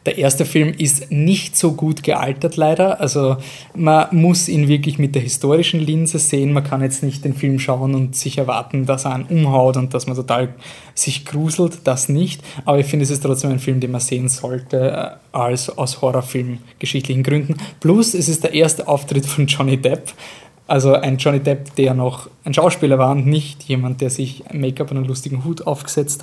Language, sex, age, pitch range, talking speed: German, male, 20-39, 135-160 Hz, 195 wpm